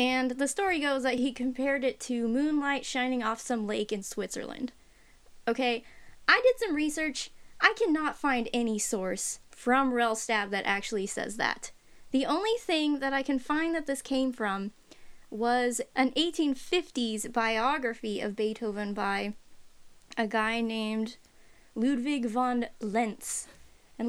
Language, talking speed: English, 145 wpm